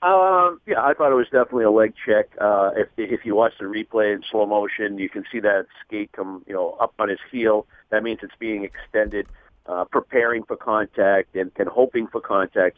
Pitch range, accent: 100-125 Hz, American